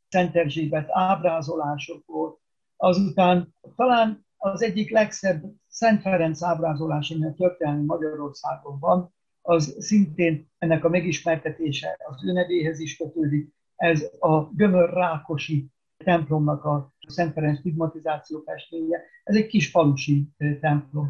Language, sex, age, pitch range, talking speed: Hungarian, male, 60-79, 155-185 Hz, 110 wpm